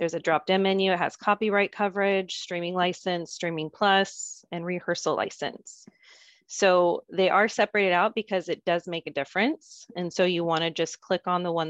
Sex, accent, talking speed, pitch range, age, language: female, American, 185 wpm, 170-210 Hz, 30-49, English